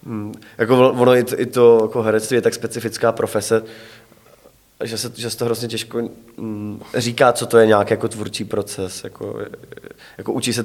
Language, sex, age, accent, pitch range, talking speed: Czech, male, 20-39, native, 110-130 Hz, 175 wpm